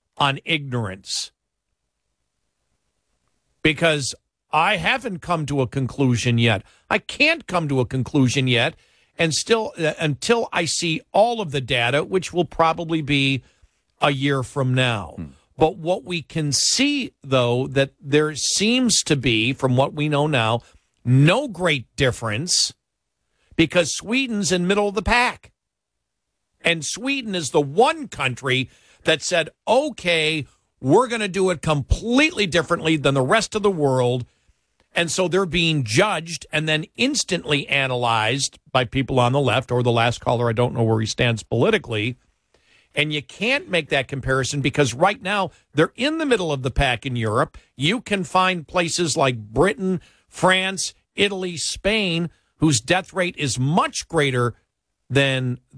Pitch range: 130-180 Hz